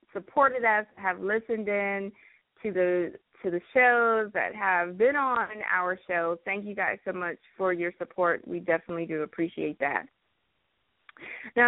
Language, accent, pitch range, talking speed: English, American, 185-245 Hz, 155 wpm